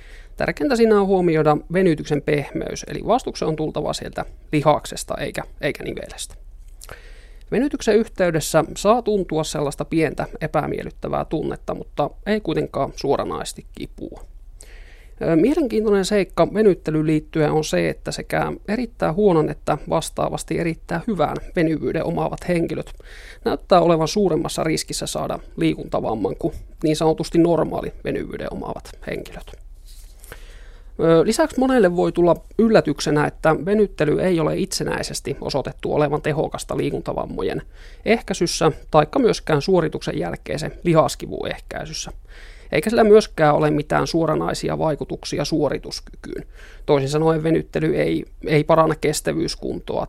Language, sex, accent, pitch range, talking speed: Finnish, male, native, 155-200 Hz, 115 wpm